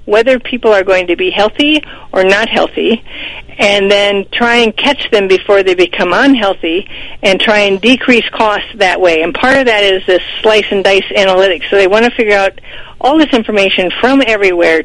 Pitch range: 180-225 Hz